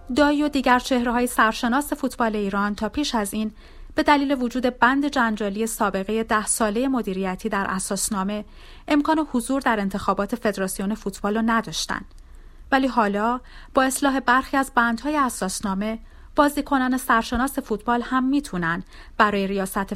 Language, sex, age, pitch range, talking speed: Persian, female, 30-49, 200-255 Hz, 135 wpm